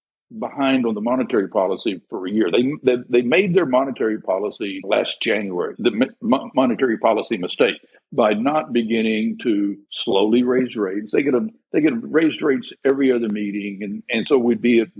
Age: 60-79